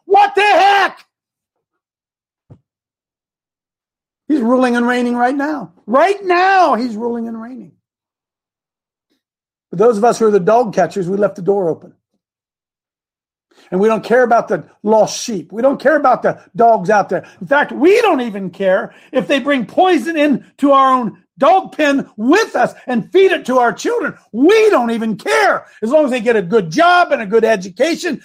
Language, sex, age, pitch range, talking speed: English, male, 50-69, 200-290 Hz, 180 wpm